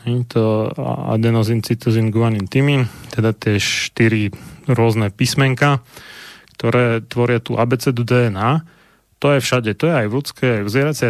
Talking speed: 140 wpm